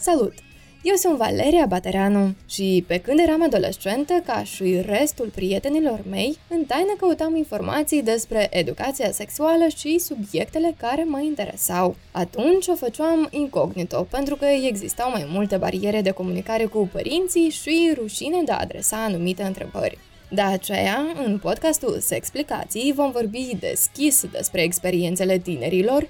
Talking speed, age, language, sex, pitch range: 135 wpm, 20-39, Romanian, female, 205-310 Hz